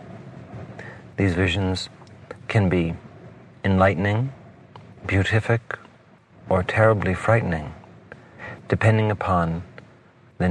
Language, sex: English, male